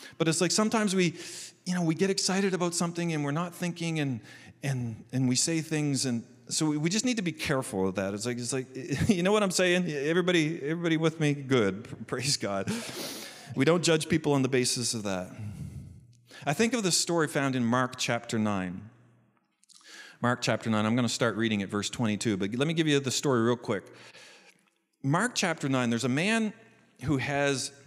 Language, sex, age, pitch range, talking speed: English, male, 40-59, 115-155 Hz, 205 wpm